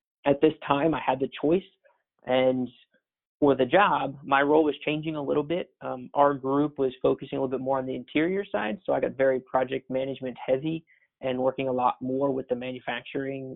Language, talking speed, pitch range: English, 205 wpm, 125-145 Hz